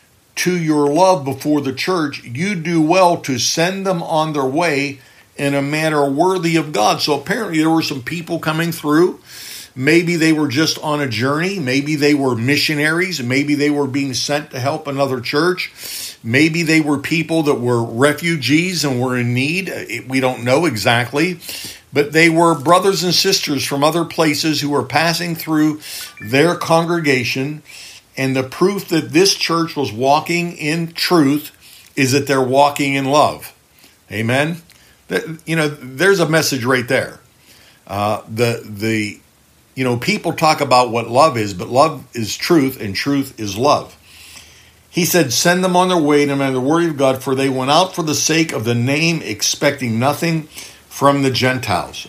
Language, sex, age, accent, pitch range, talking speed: English, male, 50-69, American, 125-160 Hz, 175 wpm